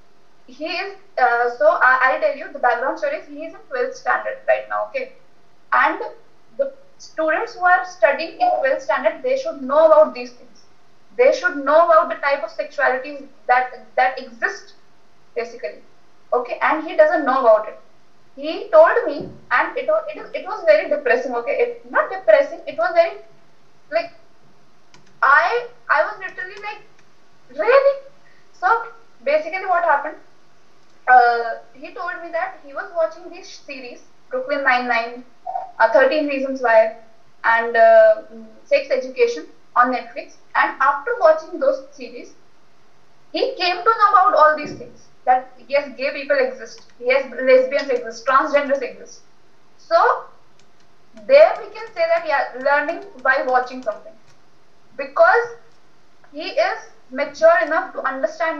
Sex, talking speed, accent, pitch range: female, 150 wpm, native, 260-345 Hz